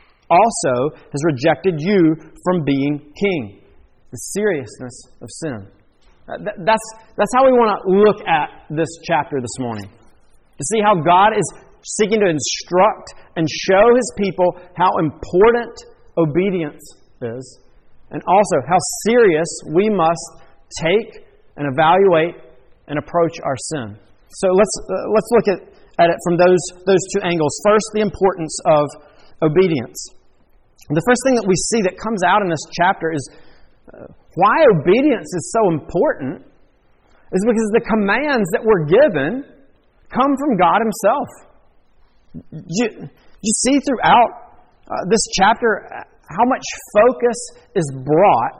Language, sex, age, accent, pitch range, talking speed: English, male, 40-59, American, 160-220 Hz, 140 wpm